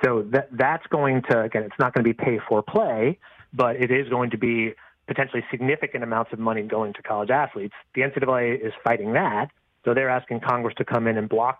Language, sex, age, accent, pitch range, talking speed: English, male, 30-49, American, 120-140 Hz, 205 wpm